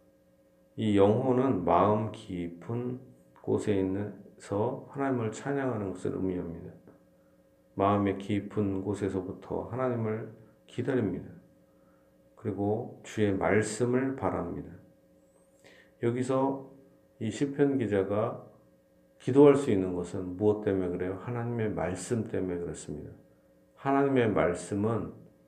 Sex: male